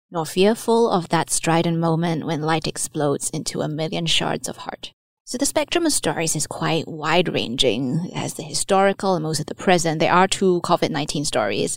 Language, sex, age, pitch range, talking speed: English, female, 20-39, 160-195 Hz, 185 wpm